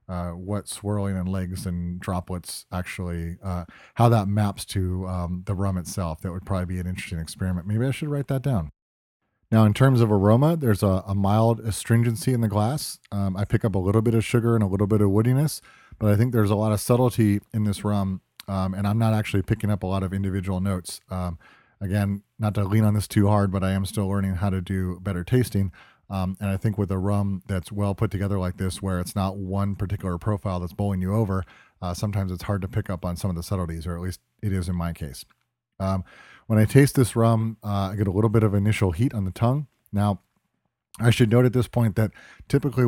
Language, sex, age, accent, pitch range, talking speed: English, male, 30-49, American, 95-110 Hz, 240 wpm